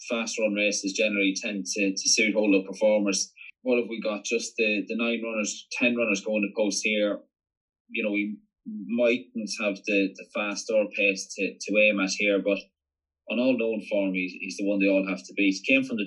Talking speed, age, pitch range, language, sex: 220 wpm, 20-39, 95-110 Hz, English, male